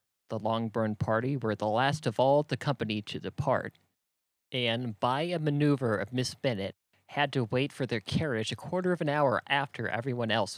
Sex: male